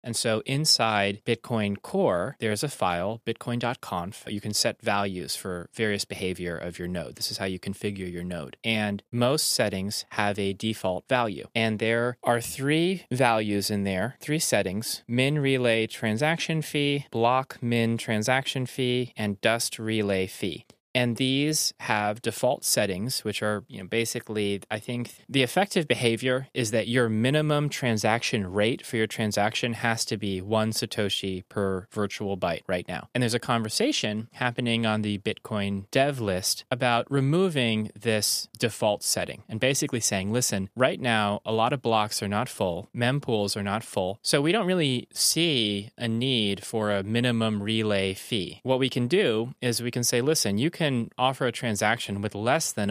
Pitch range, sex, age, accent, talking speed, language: 105-125 Hz, male, 20-39, American, 170 wpm, English